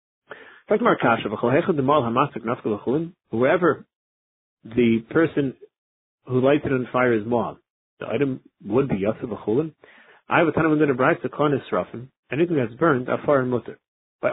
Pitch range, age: 125-155 Hz, 30-49